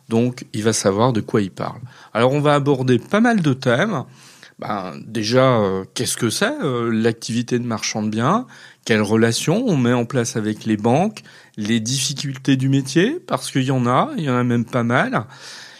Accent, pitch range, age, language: French, 115-155 Hz, 40-59, French